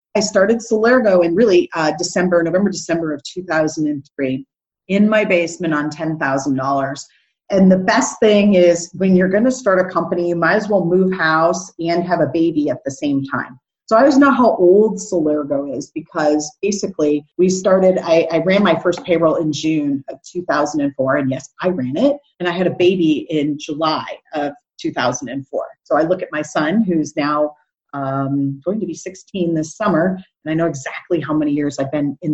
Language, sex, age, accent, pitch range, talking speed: English, female, 30-49, American, 155-185 Hz, 190 wpm